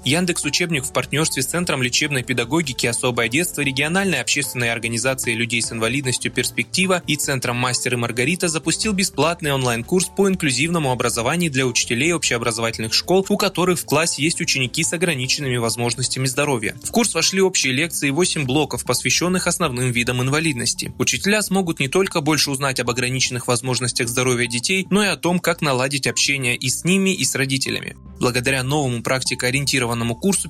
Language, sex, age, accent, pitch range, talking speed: Russian, male, 20-39, native, 125-170 Hz, 155 wpm